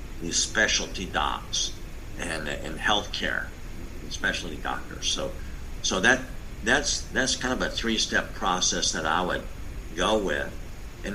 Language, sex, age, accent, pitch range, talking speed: English, male, 50-69, American, 85-100 Hz, 135 wpm